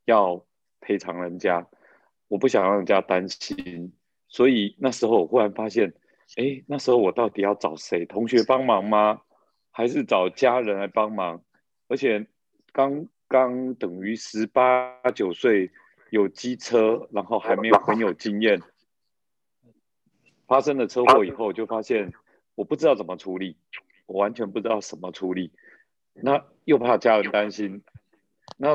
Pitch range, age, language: 95-125 Hz, 30-49, Chinese